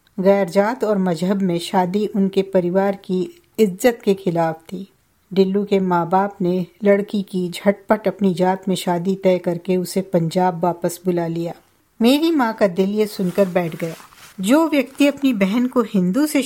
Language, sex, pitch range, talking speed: Hindi, female, 185-225 Hz, 170 wpm